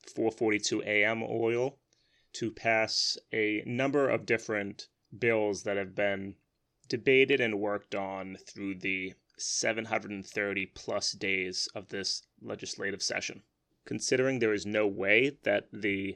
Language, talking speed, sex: English, 125 wpm, male